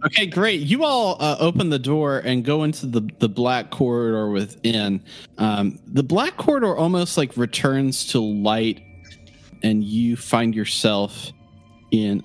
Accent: American